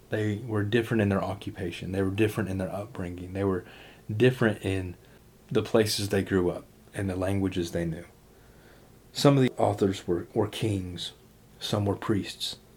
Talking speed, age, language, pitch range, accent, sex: 170 wpm, 30-49, English, 100-120 Hz, American, male